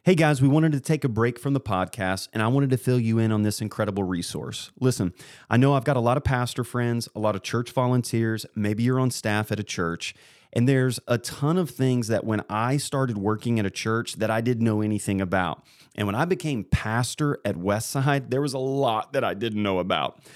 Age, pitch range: 30-49, 110-140 Hz